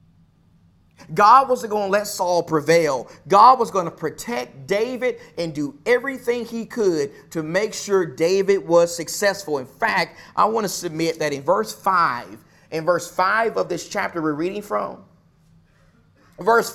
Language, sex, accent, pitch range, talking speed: English, male, American, 160-230 Hz, 160 wpm